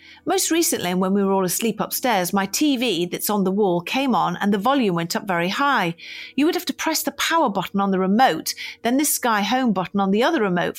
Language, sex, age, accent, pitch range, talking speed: English, female, 40-59, British, 195-270 Hz, 240 wpm